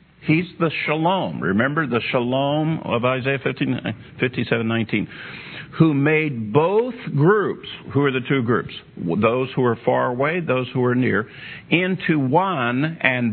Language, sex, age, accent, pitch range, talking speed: English, male, 50-69, American, 115-155 Hz, 135 wpm